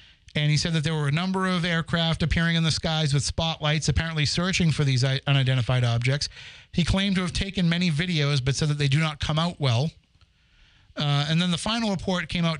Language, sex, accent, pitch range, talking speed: English, male, American, 135-170 Hz, 220 wpm